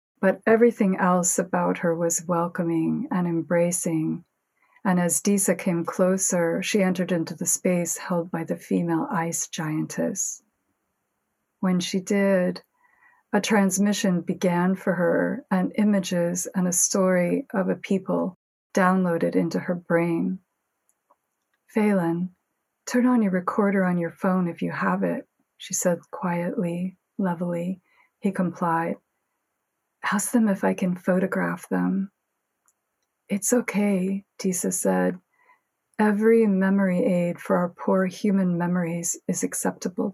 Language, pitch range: English, 170-200 Hz